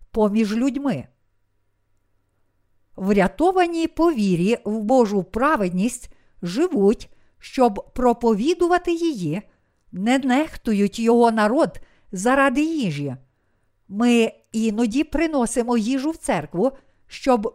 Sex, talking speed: female, 80 wpm